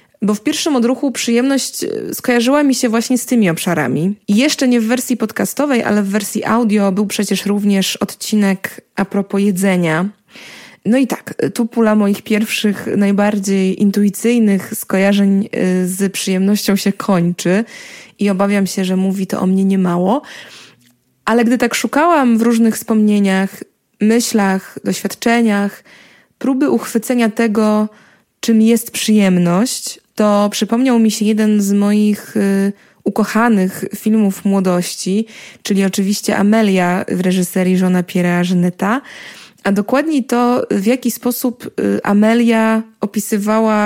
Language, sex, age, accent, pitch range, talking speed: Polish, female, 20-39, native, 195-235 Hz, 125 wpm